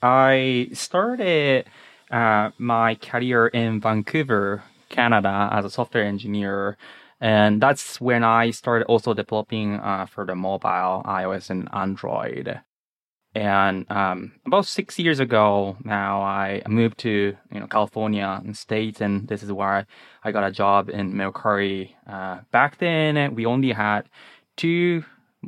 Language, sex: English, male